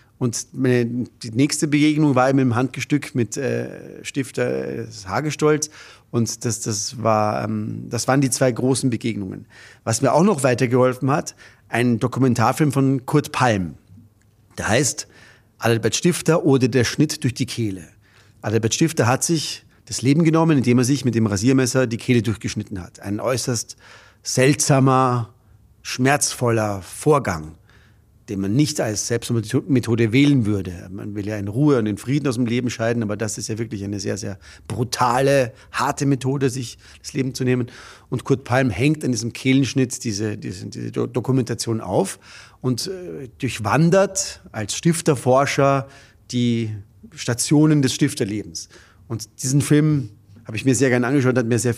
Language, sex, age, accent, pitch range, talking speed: German, male, 40-59, German, 105-135 Hz, 155 wpm